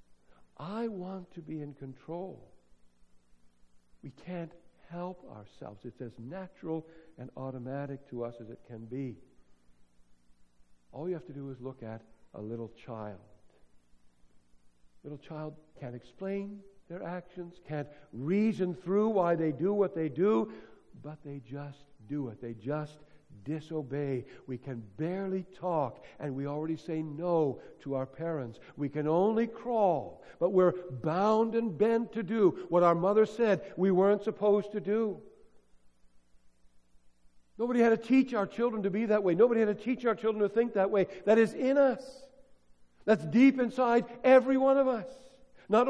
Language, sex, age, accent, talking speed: English, male, 60-79, American, 155 wpm